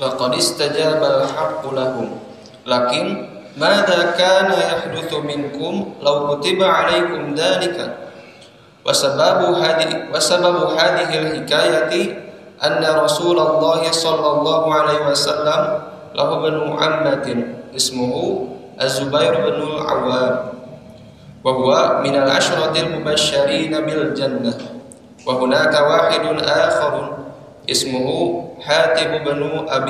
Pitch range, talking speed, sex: 135-160 Hz, 40 wpm, male